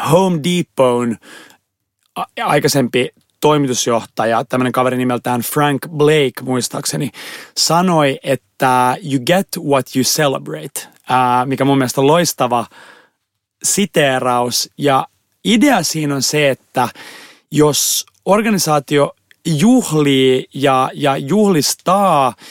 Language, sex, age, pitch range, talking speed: Finnish, male, 30-49, 130-165 Hz, 95 wpm